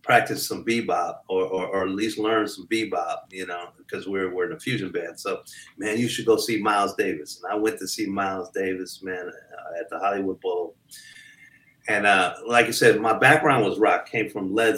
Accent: American